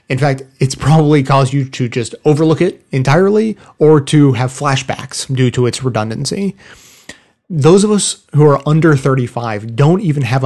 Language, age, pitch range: English, 30-49, 125-155 Hz